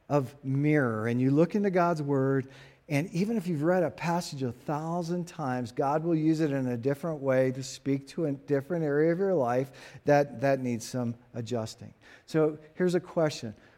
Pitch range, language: 130-175 Hz, English